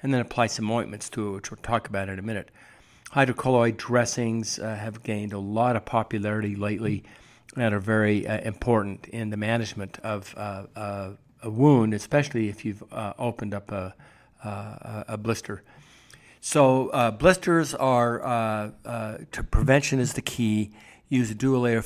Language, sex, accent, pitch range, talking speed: English, male, American, 105-120 Hz, 160 wpm